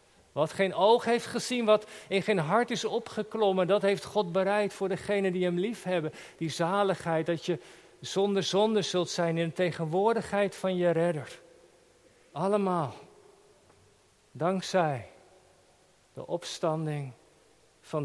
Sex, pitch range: male, 165-215 Hz